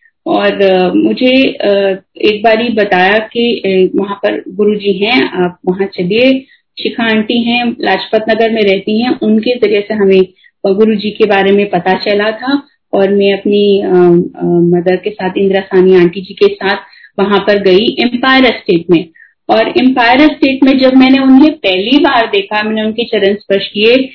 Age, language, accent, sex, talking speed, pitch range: 30-49, Hindi, native, female, 165 wpm, 200-270 Hz